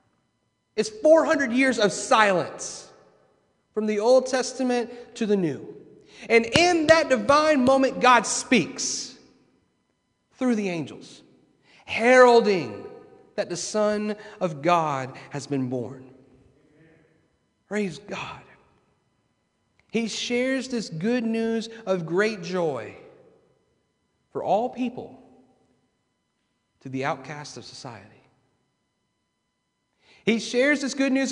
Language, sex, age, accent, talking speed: English, male, 40-59, American, 105 wpm